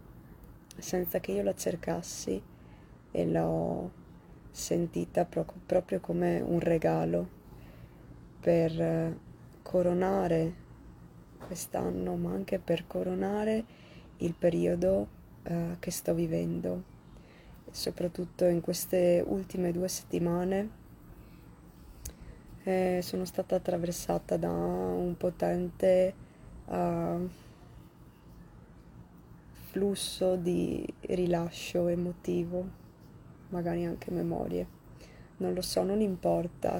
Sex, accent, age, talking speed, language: female, native, 20-39, 80 wpm, Italian